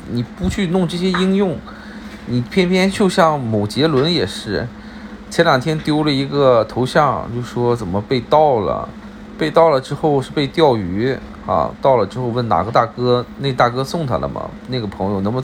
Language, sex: Chinese, male